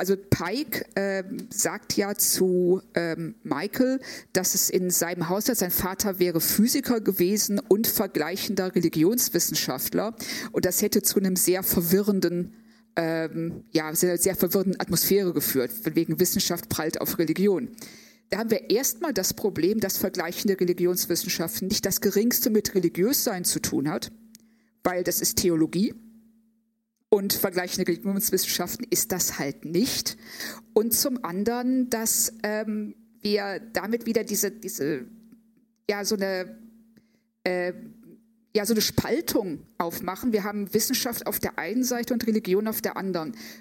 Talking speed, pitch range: 130 wpm, 180-225 Hz